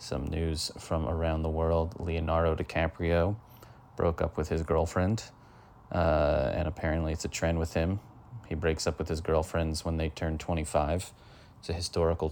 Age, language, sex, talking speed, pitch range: 30-49, English, male, 165 wpm, 80-95 Hz